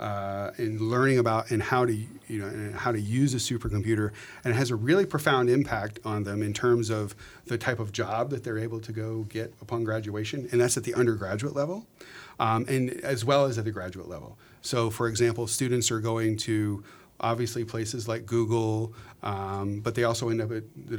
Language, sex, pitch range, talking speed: English, male, 105-120 Hz, 210 wpm